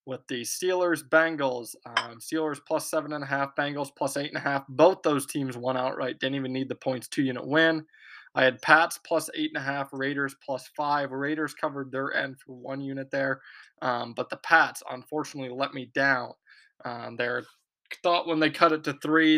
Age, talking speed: 20-39, 205 wpm